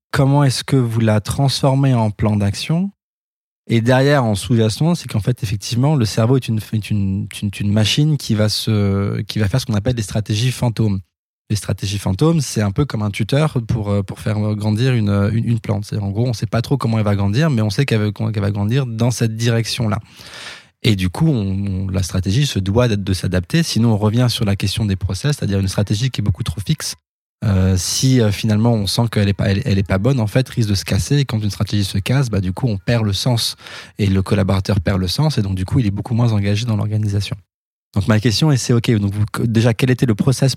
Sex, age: male, 20-39